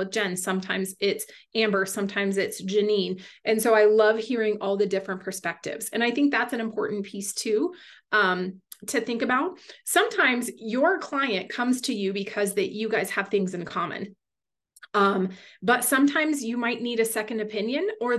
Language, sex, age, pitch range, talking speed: English, female, 30-49, 195-225 Hz, 175 wpm